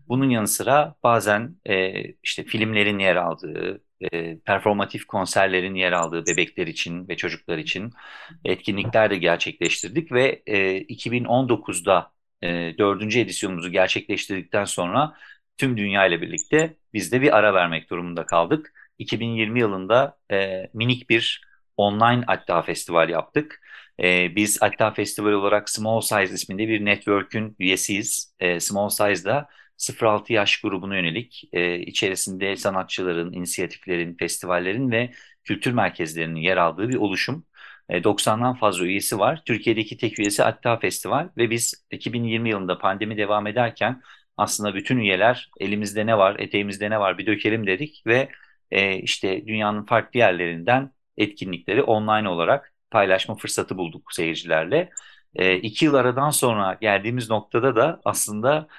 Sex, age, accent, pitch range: male, 50-69, native, 95-115 Hz